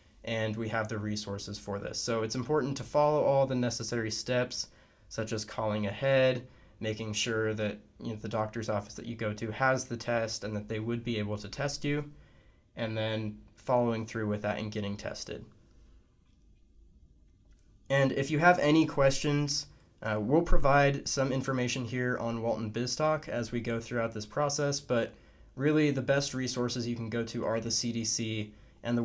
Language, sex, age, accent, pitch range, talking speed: English, male, 20-39, American, 105-130 Hz, 180 wpm